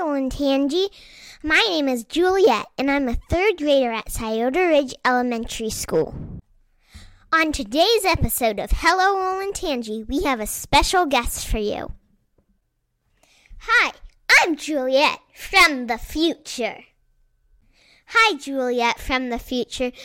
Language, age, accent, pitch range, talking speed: English, 10-29, American, 240-335 Hz, 115 wpm